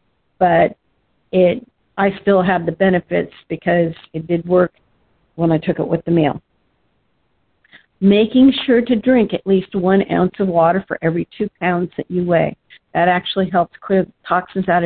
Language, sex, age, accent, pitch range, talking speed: English, female, 50-69, American, 170-195 Hz, 165 wpm